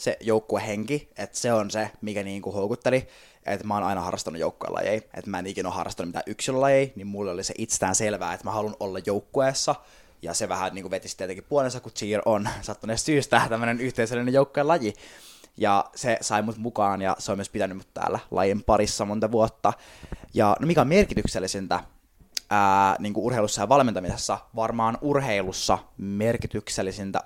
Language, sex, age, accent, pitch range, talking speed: Finnish, male, 20-39, native, 95-115 Hz, 170 wpm